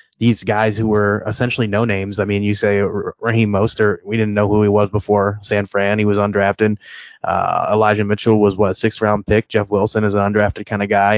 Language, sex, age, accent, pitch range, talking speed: English, male, 20-39, American, 100-115 Hz, 220 wpm